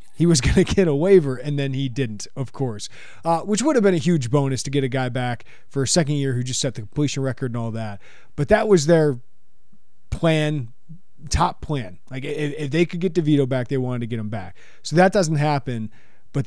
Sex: male